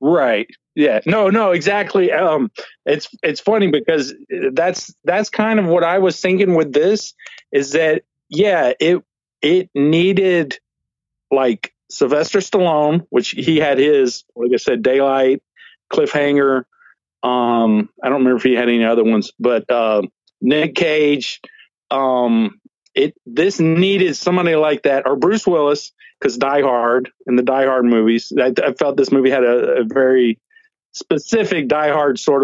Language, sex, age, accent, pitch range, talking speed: English, male, 40-59, American, 125-175 Hz, 155 wpm